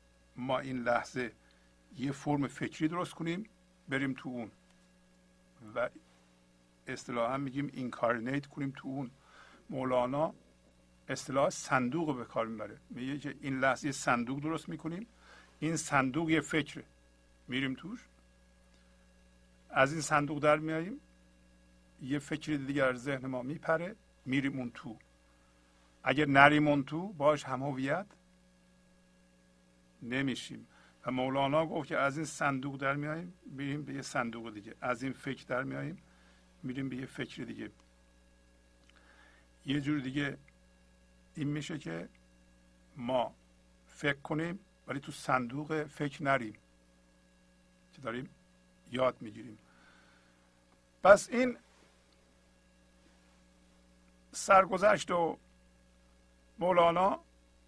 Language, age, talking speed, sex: Persian, 50-69, 110 wpm, male